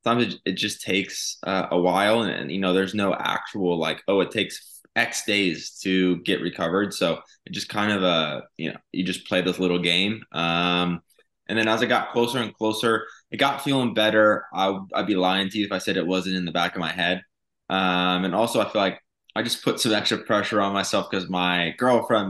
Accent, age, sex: American, 20-39, male